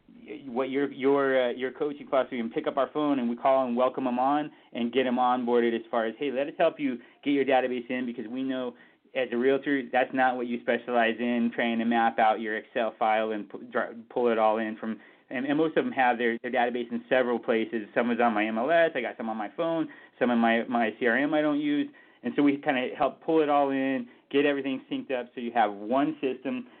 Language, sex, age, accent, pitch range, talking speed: English, male, 30-49, American, 120-145 Hz, 250 wpm